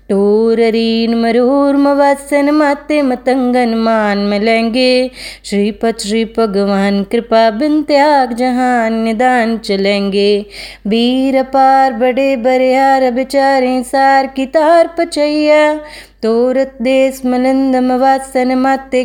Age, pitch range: 20-39, 250-300 Hz